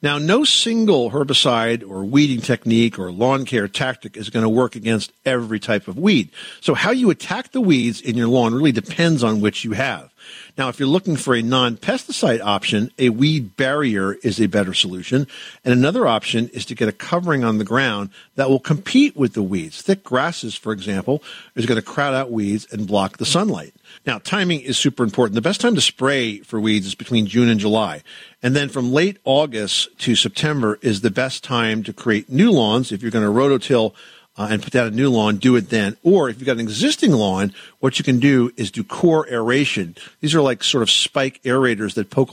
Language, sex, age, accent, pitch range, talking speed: English, male, 50-69, American, 110-135 Hz, 215 wpm